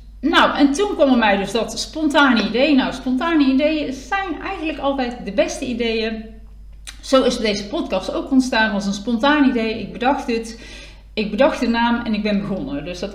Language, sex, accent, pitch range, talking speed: Dutch, female, Dutch, 200-270 Hz, 190 wpm